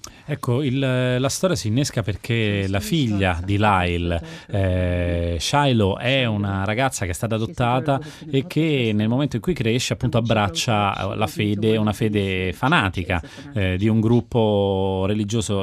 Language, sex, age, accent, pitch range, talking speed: Italian, male, 30-49, native, 95-140 Hz, 145 wpm